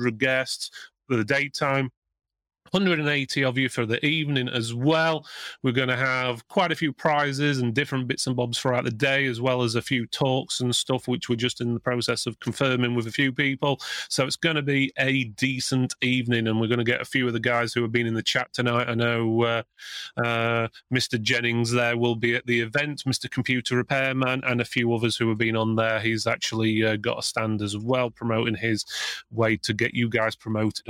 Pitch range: 120-160 Hz